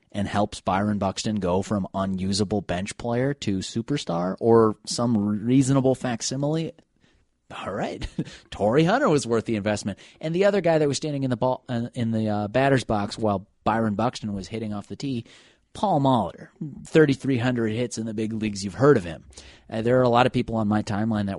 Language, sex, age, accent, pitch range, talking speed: English, male, 30-49, American, 105-140 Hz, 200 wpm